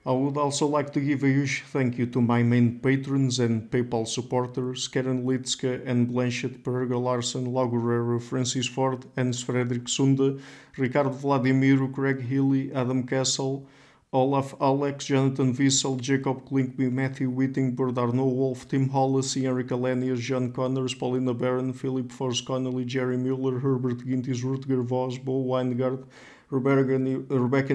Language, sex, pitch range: English, male, 125-135 Hz